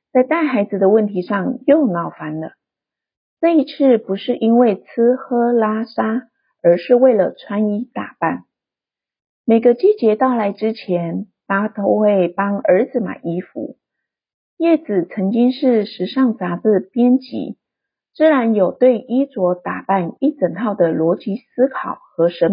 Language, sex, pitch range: Chinese, female, 195-260 Hz